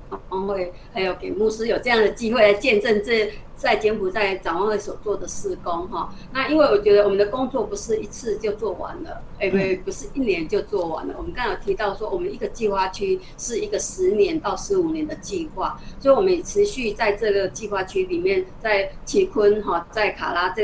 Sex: female